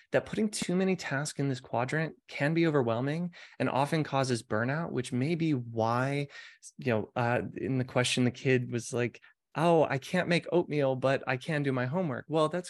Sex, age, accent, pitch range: male, 20-39, American, 120-155 Hz